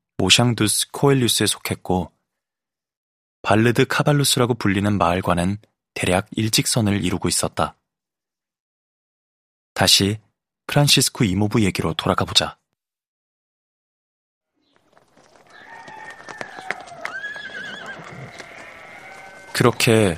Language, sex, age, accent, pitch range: Korean, male, 20-39, native, 95-125 Hz